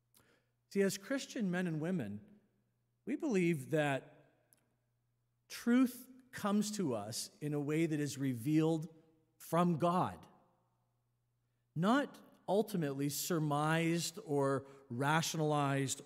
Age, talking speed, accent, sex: 40-59, 95 wpm, American, male